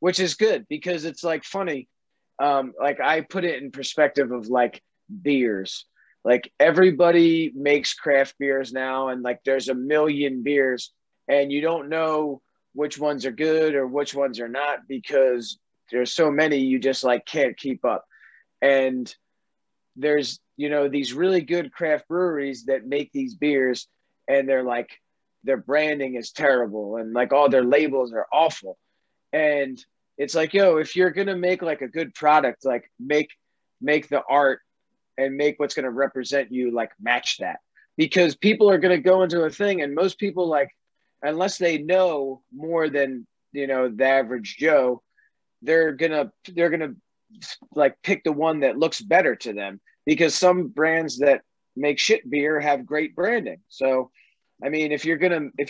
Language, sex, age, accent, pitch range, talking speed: English, male, 30-49, American, 135-165 Hz, 175 wpm